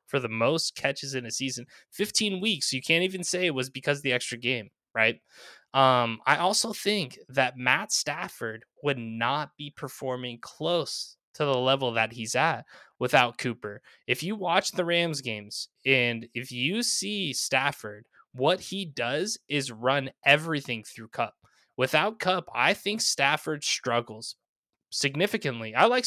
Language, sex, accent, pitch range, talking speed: English, male, American, 125-175 Hz, 155 wpm